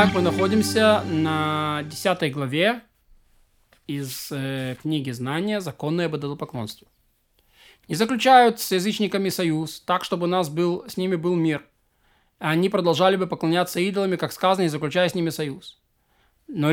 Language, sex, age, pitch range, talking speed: Russian, male, 20-39, 160-210 Hz, 145 wpm